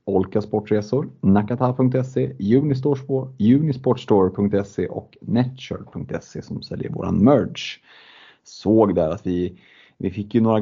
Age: 30-49